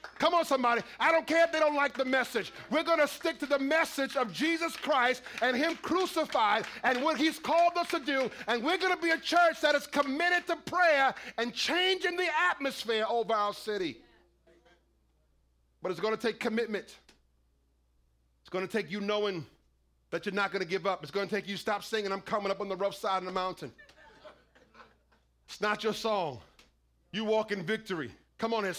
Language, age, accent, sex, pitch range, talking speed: English, 40-59, American, male, 205-275 Hz, 190 wpm